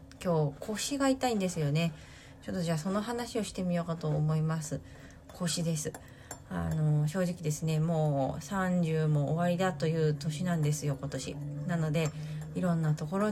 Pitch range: 150-185 Hz